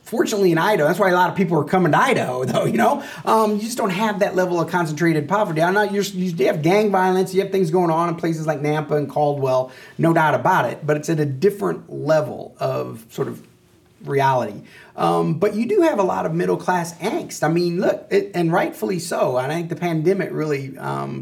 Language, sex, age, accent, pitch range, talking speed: English, male, 30-49, American, 145-195 Hz, 225 wpm